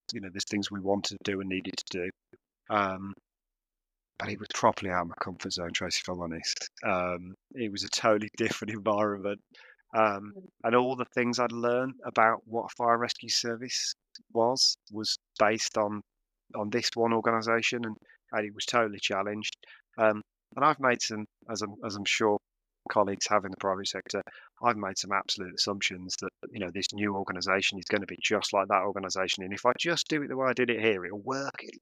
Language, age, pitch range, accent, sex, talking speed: English, 30-49, 100-120 Hz, British, male, 205 wpm